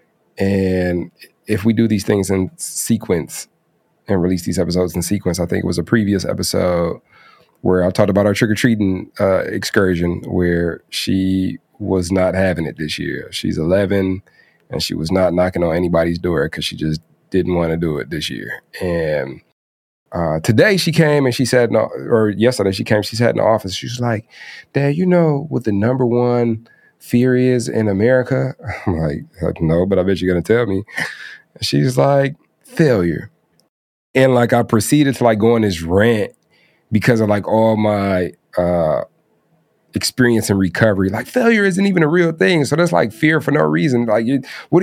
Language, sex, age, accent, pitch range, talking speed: English, male, 30-49, American, 90-125 Hz, 180 wpm